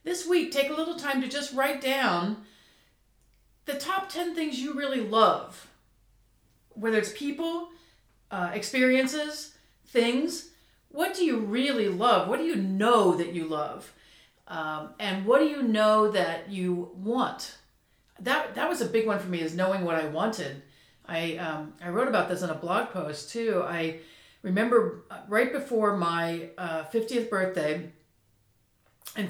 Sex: female